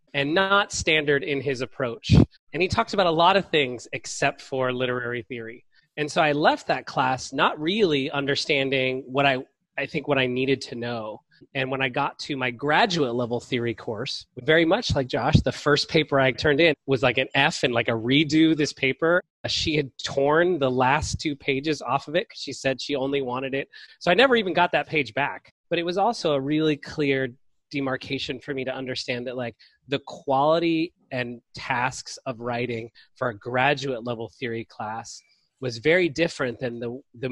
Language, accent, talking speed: English, American, 200 wpm